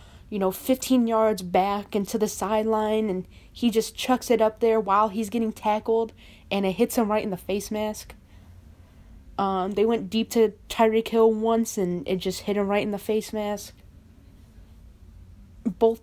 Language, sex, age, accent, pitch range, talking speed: English, female, 20-39, American, 175-225 Hz, 175 wpm